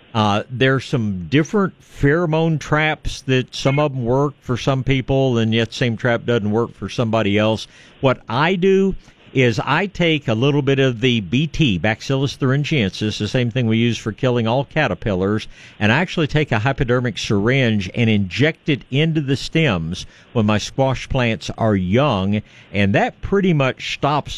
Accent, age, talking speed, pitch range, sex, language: American, 60-79, 170 wpm, 105-135 Hz, male, English